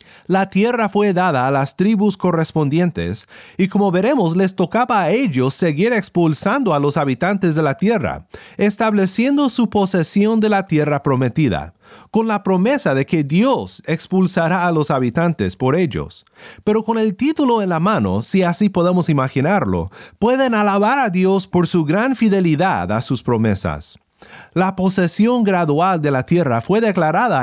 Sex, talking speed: male, 160 wpm